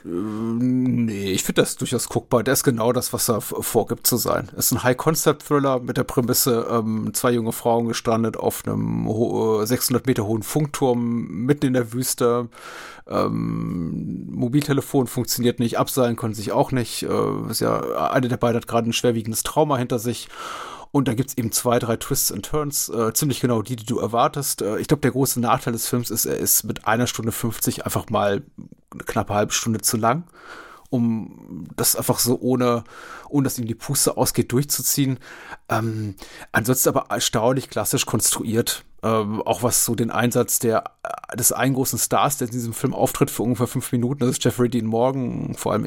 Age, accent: 30-49, German